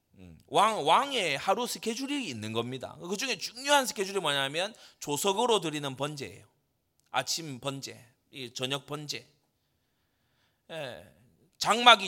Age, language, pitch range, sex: 30-49, Korean, 130-220 Hz, male